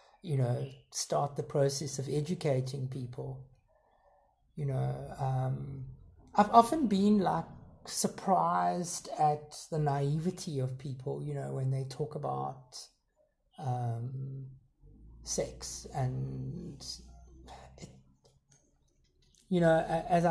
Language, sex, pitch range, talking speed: English, male, 130-165 Hz, 100 wpm